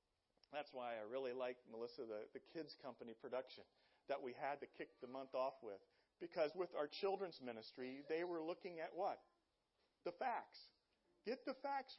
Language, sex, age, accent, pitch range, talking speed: English, male, 40-59, American, 125-180 Hz, 175 wpm